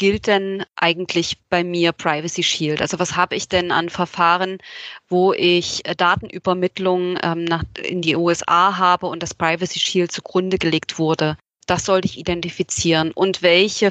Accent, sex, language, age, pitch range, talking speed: German, female, German, 20-39, 165-185 Hz, 145 wpm